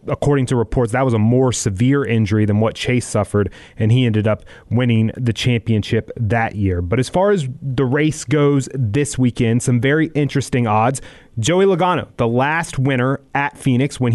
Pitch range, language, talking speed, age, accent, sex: 115-145 Hz, English, 180 wpm, 30-49, American, male